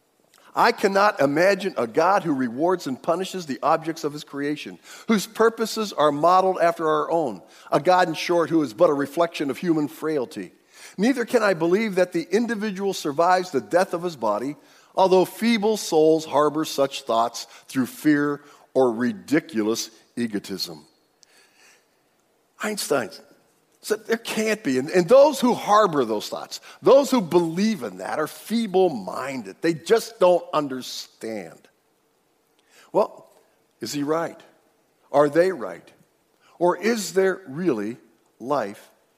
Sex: male